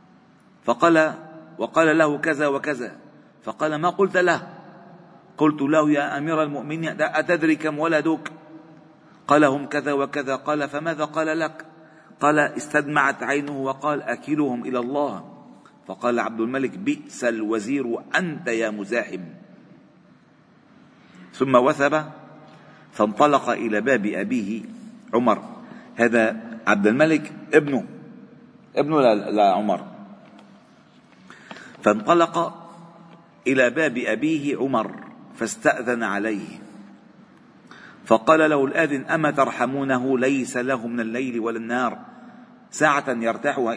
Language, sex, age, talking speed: Arabic, male, 50-69, 100 wpm